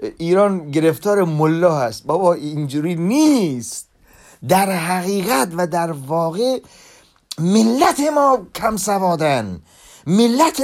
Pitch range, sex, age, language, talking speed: 160-235 Hz, male, 40-59, Persian, 95 wpm